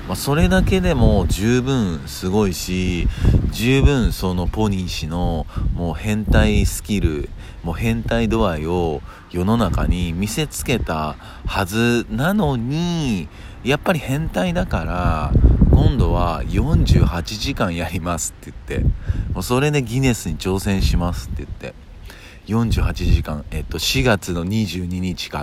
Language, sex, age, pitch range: Japanese, male, 40-59, 85-105 Hz